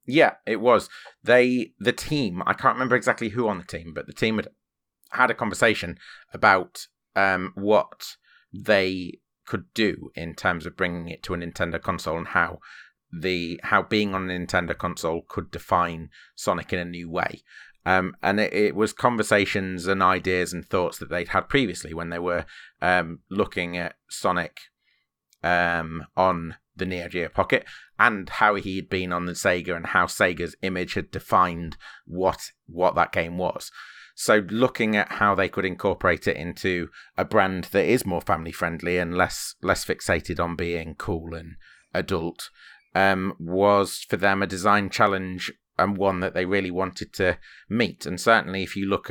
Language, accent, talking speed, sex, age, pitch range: English, British, 175 wpm, male, 30-49, 85-100 Hz